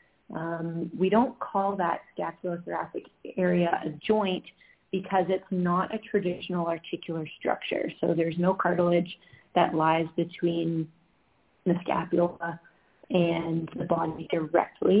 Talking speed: 115 wpm